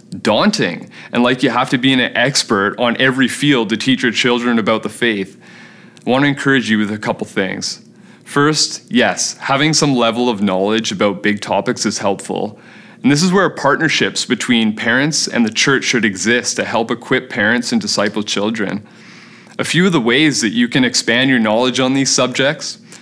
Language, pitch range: English, 110-140 Hz